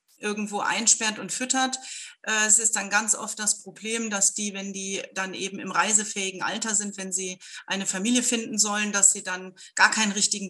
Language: German